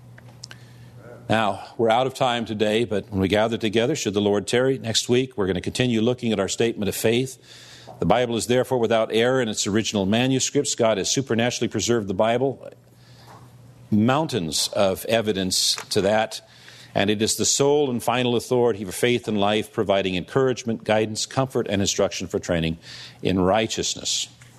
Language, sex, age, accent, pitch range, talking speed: English, male, 50-69, American, 105-125 Hz, 170 wpm